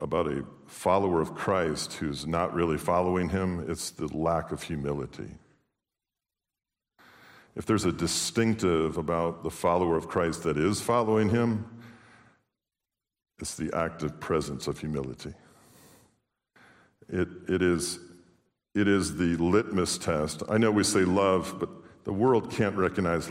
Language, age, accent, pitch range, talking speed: English, 50-69, American, 80-100 Hz, 135 wpm